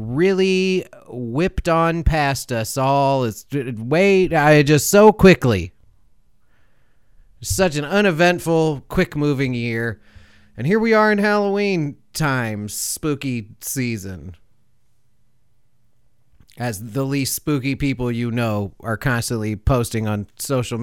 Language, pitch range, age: English, 115-145 Hz, 30-49